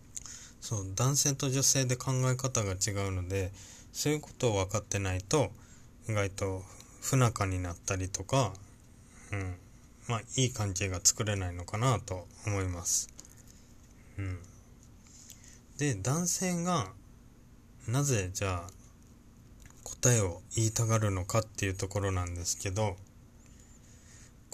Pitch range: 100-120 Hz